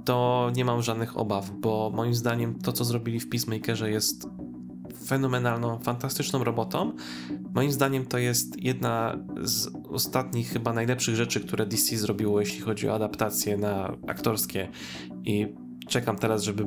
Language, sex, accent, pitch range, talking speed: Polish, male, native, 100-125 Hz, 145 wpm